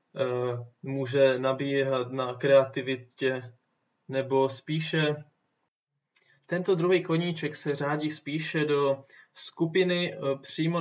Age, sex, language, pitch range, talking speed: 20-39, male, Czech, 130-150 Hz, 85 wpm